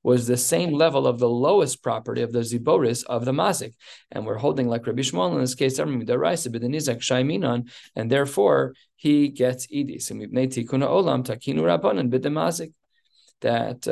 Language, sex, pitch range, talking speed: English, male, 120-145 Hz, 165 wpm